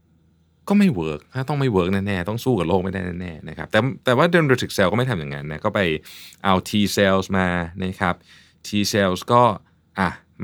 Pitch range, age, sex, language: 80-110 Hz, 20-39, male, Thai